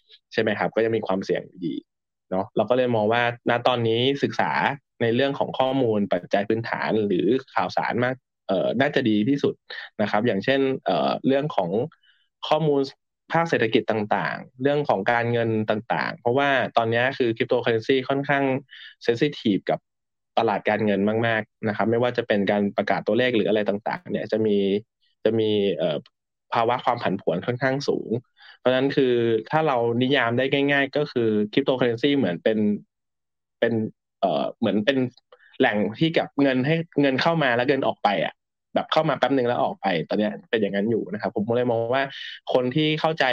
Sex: male